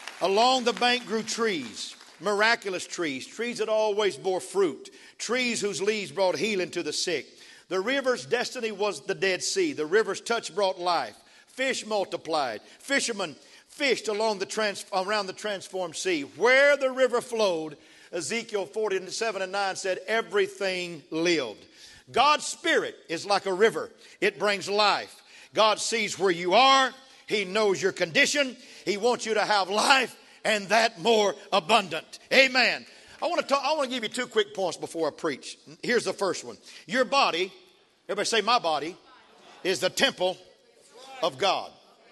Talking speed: 155 wpm